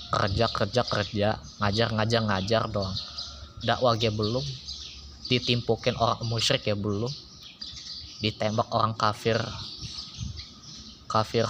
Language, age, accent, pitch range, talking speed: Indonesian, 20-39, native, 100-125 Hz, 100 wpm